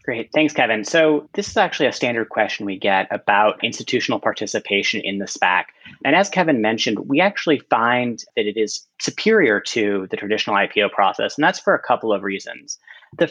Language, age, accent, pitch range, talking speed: English, 30-49, American, 120-190 Hz, 190 wpm